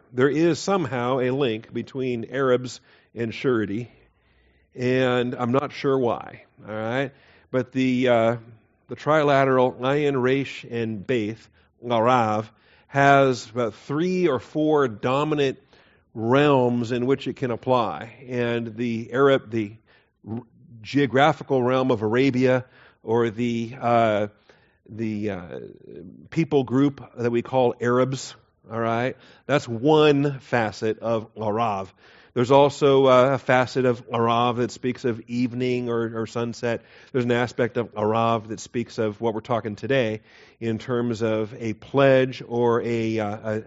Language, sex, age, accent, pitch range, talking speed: English, male, 50-69, American, 115-135 Hz, 135 wpm